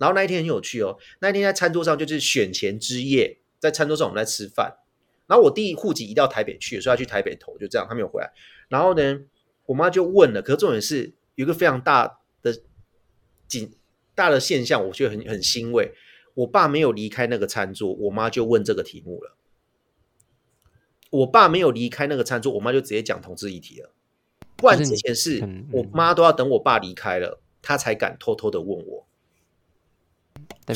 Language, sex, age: Chinese, male, 30-49